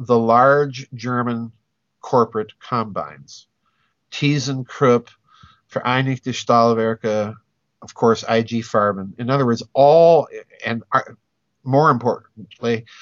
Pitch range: 115-140 Hz